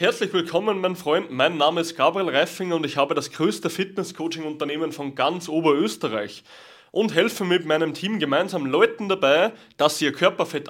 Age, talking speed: 20-39, 170 wpm